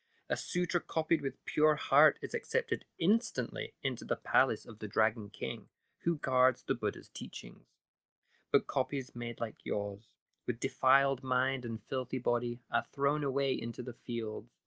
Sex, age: male, 20-39